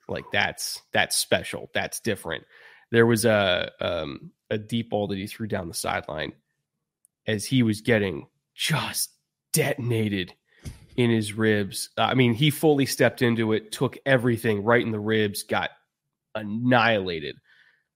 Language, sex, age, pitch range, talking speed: English, male, 20-39, 105-120 Hz, 145 wpm